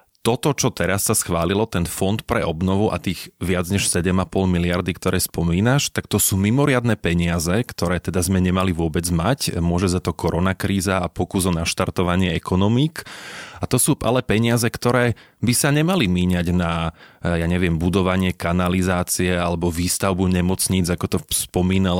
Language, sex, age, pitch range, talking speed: Slovak, male, 30-49, 90-105 Hz, 160 wpm